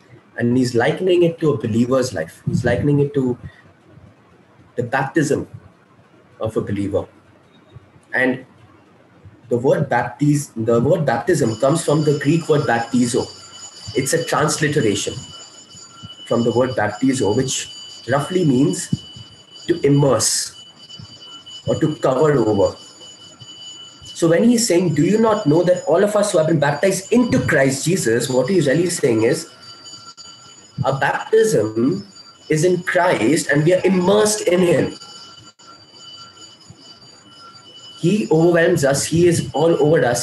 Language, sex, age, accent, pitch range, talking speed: English, male, 20-39, Indian, 125-170 Hz, 130 wpm